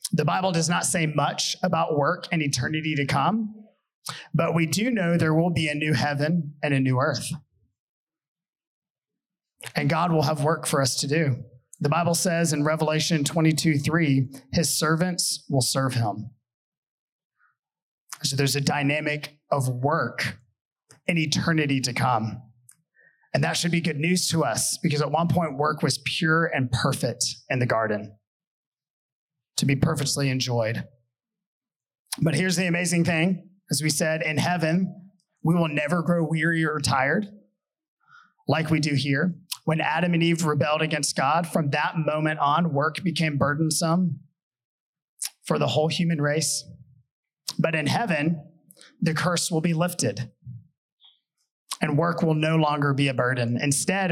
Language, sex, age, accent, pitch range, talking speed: English, male, 30-49, American, 140-170 Hz, 155 wpm